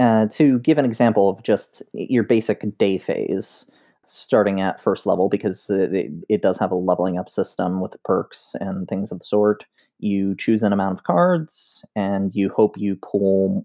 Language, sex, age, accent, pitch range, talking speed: English, male, 30-49, American, 95-110 Hz, 185 wpm